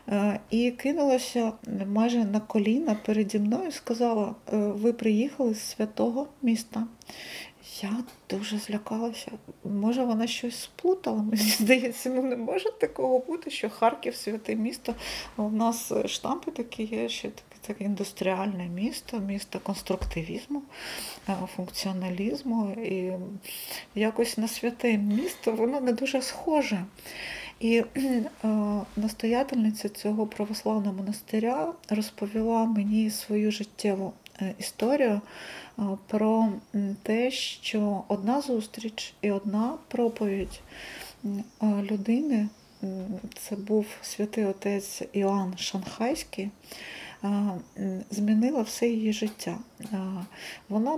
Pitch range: 205-235 Hz